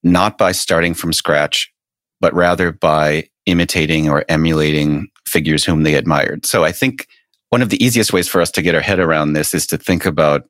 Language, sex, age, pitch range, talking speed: English, male, 40-59, 75-95 Hz, 200 wpm